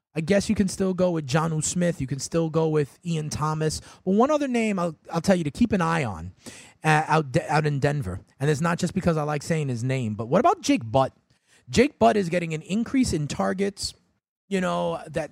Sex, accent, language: male, American, English